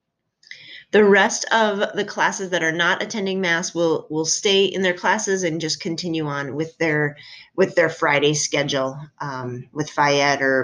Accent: American